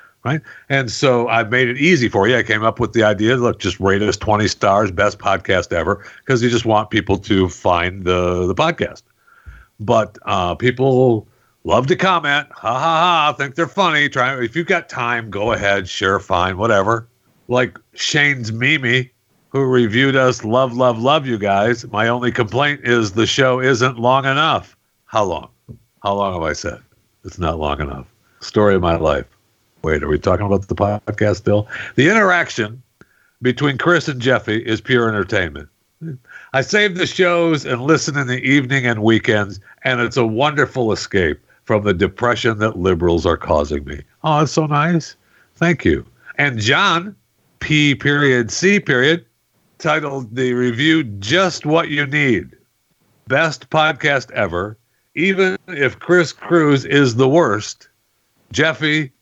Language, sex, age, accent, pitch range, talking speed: English, male, 60-79, American, 105-145 Hz, 165 wpm